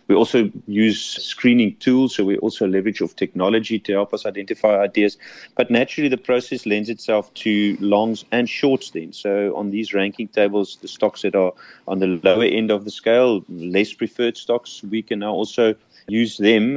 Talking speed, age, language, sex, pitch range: 185 wpm, 30-49, English, male, 100-115 Hz